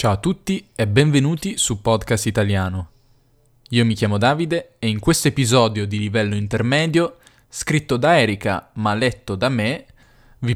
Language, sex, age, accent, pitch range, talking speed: Italian, male, 10-29, native, 105-130 Hz, 155 wpm